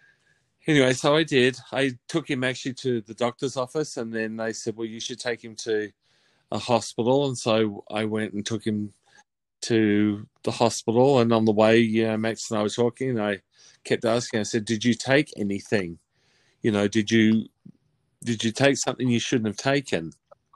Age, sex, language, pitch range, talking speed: 30-49, male, English, 110-130 Hz, 195 wpm